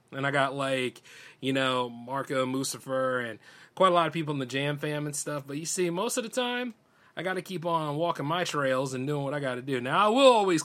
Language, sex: English, male